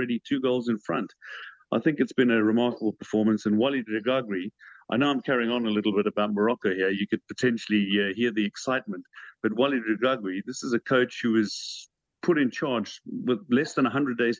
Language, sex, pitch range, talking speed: English, male, 110-135 Hz, 215 wpm